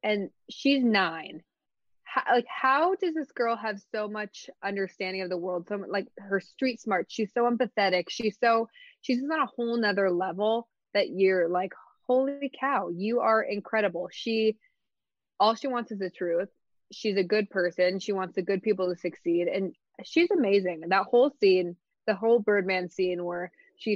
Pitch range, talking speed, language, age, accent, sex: 185-240 Hz, 180 wpm, English, 20-39, American, female